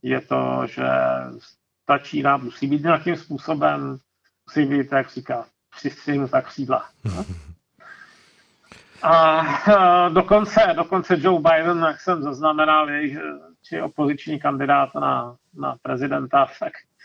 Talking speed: 115 wpm